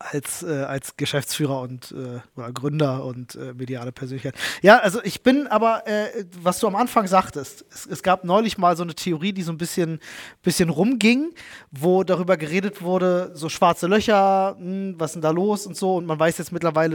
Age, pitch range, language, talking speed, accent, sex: 20-39, 160-200 Hz, German, 200 wpm, German, male